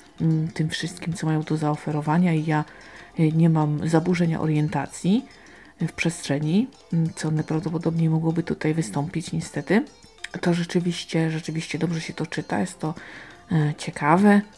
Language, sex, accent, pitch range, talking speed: Polish, female, native, 160-180 Hz, 125 wpm